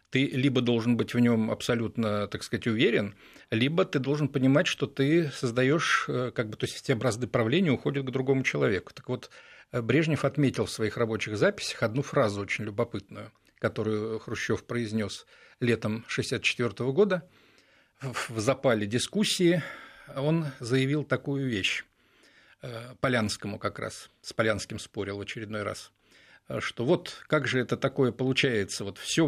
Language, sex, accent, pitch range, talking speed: Russian, male, native, 115-140 Hz, 145 wpm